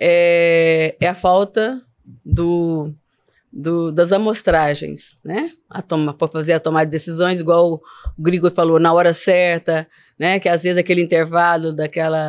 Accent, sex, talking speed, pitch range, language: Brazilian, female, 140 wpm, 170-220 Hz, Portuguese